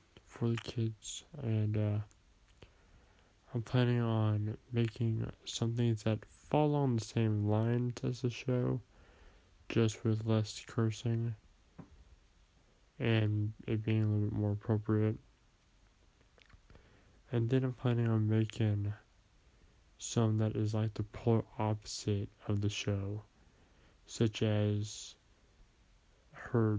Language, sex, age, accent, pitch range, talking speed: English, male, 20-39, American, 105-115 Hz, 110 wpm